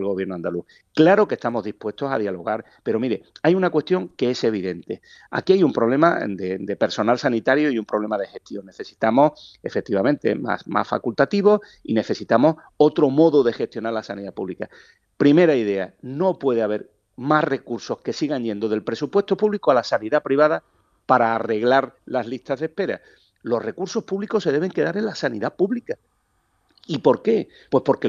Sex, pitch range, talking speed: male, 110-170 Hz, 175 wpm